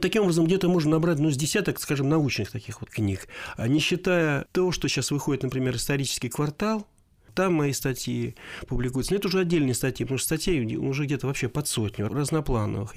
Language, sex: Russian, male